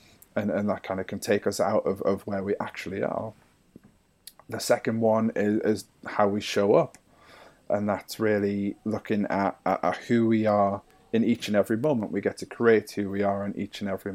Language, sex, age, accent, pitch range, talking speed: English, male, 30-49, British, 100-115 Hz, 210 wpm